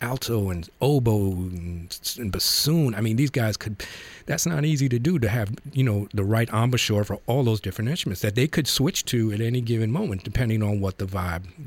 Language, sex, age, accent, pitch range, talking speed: English, male, 40-59, American, 95-115 Hz, 210 wpm